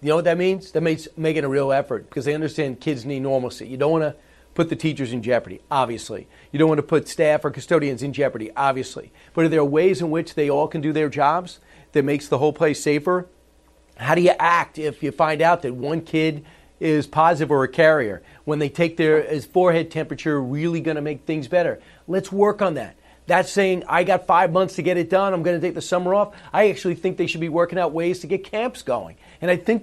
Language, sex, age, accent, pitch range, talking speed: English, male, 40-59, American, 150-180 Hz, 245 wpm